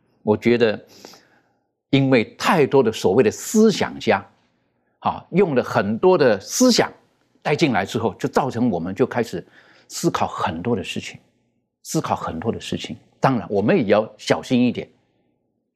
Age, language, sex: 50-69, Chinese, male